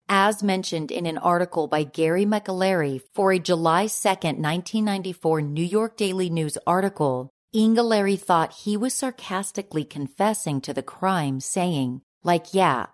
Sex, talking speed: female, 140 wpm